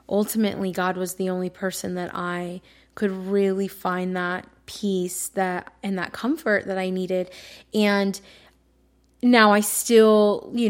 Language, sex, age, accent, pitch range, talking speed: English, female, 20-39, American, 180-200 Hz, 140 wpm